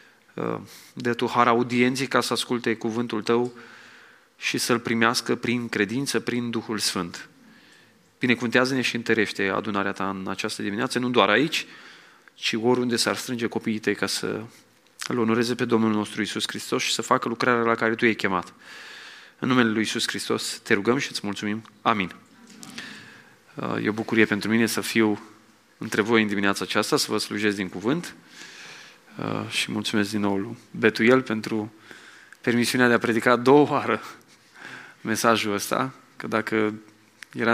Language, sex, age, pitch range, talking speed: English, male, 30-49, 105-120 Hz, 155 wpm